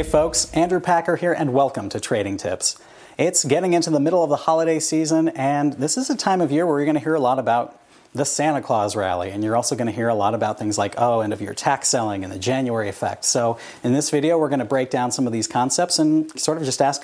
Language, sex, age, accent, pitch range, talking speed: English, male, 40-59, American, 115-155 Hz, 270 wpm